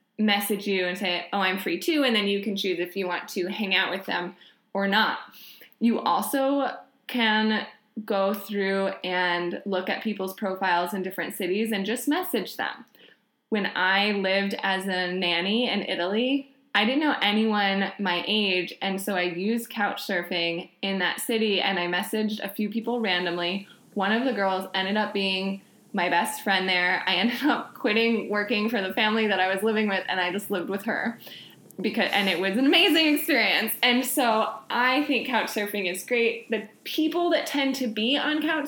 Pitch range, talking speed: 195-240 Hz, 190 wpm